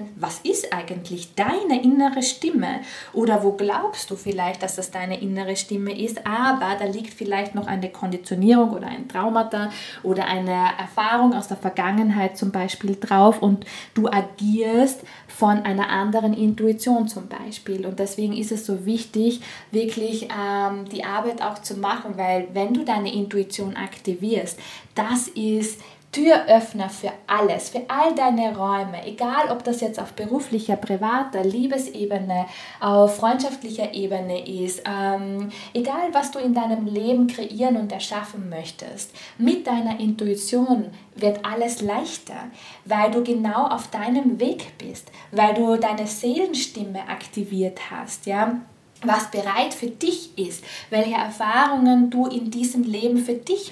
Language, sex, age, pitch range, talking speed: German, female, 20-39, 200-245 Hz, 145 wpm